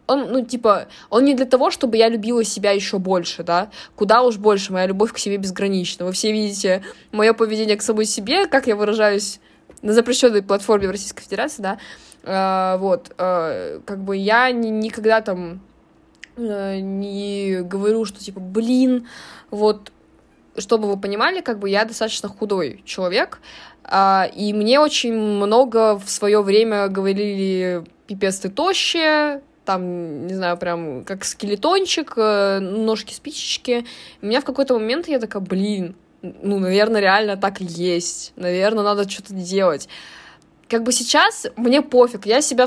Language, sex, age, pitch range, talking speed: Russian, female, 20-39, 195-245 Hz, 150 wpm